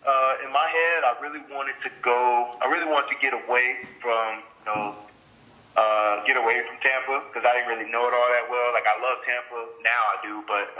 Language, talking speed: English, 220 wpm